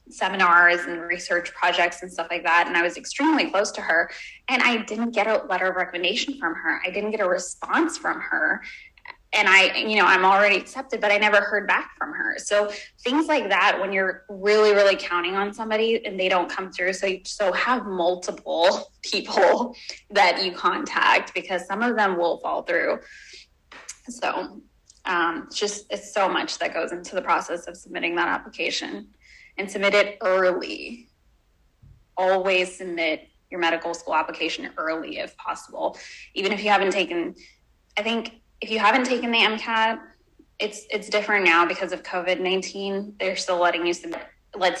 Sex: female